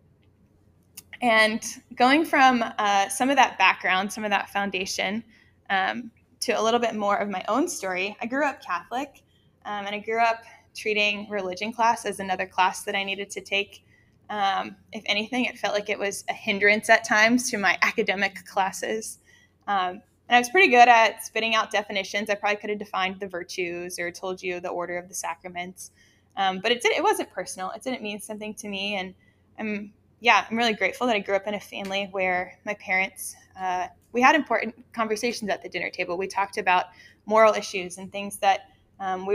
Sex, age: female, 10-29